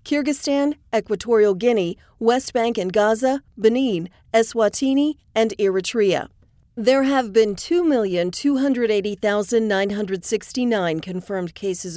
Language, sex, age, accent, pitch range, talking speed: English, female, 40-59, American, 190-235 Hz, 85 wpm